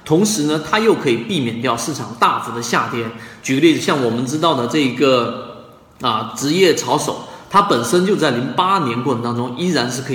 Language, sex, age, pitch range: Chinese, male, 30-49, 120-160 Hz